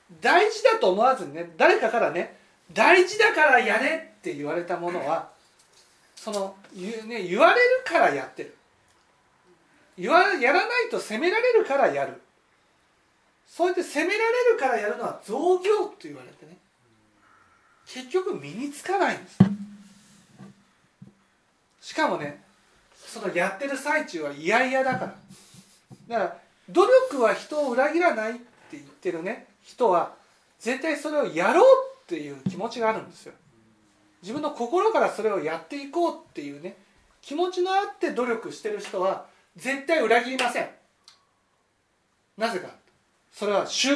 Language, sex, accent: Japanese, male, native